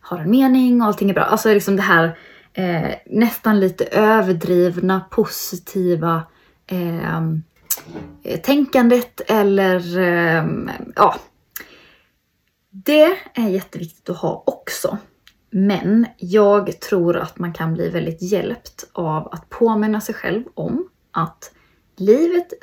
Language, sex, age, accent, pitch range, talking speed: Swedish, female, 20-39, native, 175-215 Hz, 105 wpm